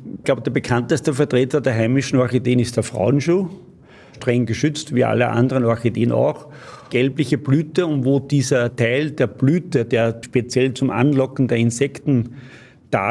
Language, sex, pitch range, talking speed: German, male, 120-140 Hz, 150 wpm